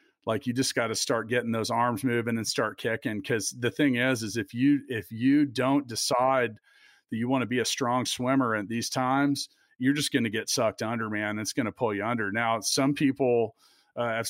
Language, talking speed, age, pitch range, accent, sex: English, 225 wpm, 40-59, 115-140 Hz, American, male